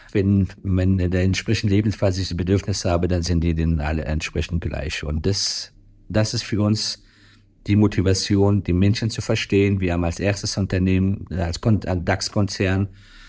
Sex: male